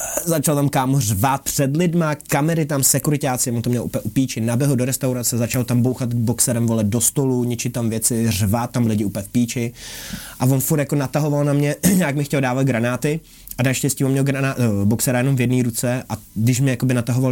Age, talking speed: 20-39, 210 wpm